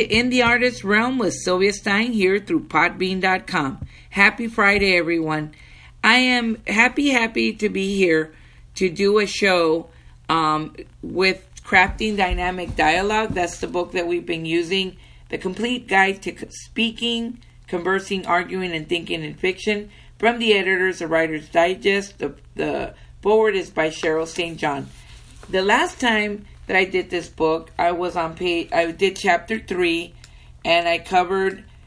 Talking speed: 150 wpm